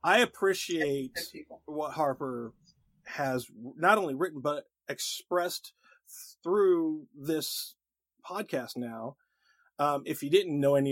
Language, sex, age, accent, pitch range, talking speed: English, male, 40-59, American, 120-165 Hz, 110 wpm